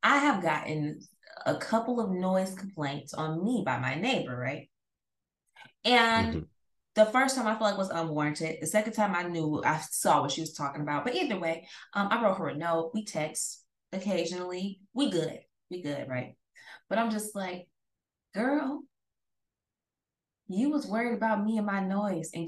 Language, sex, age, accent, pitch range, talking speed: English, female, 20-39, American, 165-235 Hz, 175 wpm